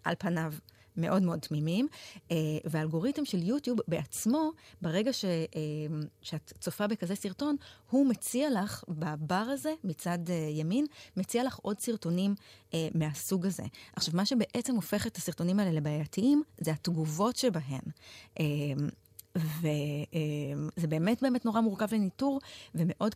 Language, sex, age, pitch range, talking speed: Hebrew, female, 30-49, 155-215 Hz, 120 wpm